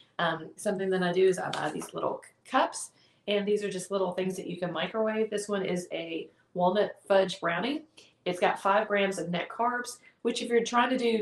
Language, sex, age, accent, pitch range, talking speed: English, female, 30-49, American, 180-225 Hz, 220 wpm